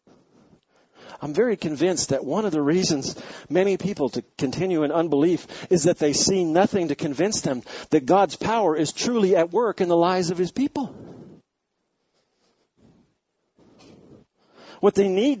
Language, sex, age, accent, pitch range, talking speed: English, male, 50-69, American, 125-185 Hz, 150 wpm